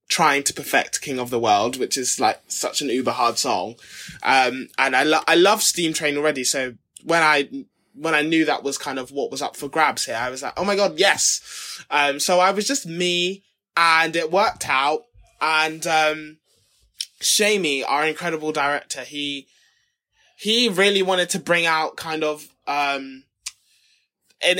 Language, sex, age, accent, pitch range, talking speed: English, male, 20-39, British, 145-185 Hz, 180 wpm